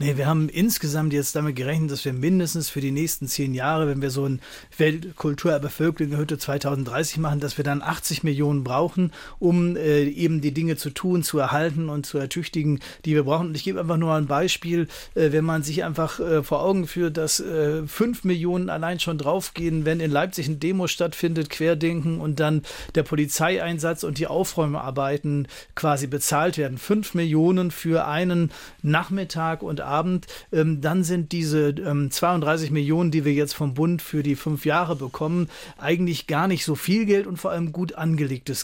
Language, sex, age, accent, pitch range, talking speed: German, male, 30-49, German, 150-170 Hz, 185 wpm